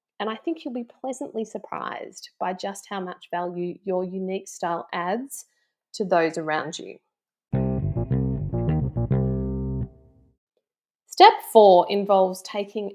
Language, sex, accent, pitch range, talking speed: English, female, Australian, 180-220 Hz, 110 wpm